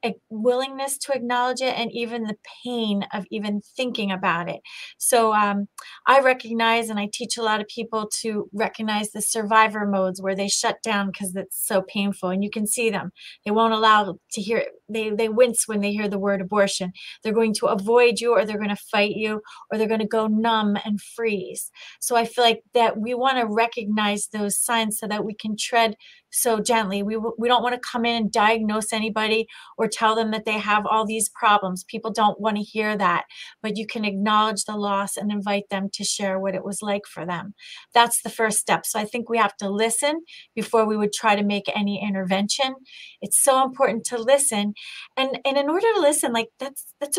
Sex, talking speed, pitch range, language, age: female, 215 wpm, 205-235 Hz, English, 30-49